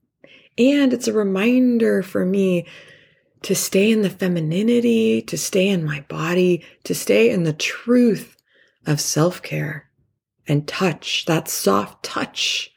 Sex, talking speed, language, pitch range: female, 130 wpm, English, 150-205 Hz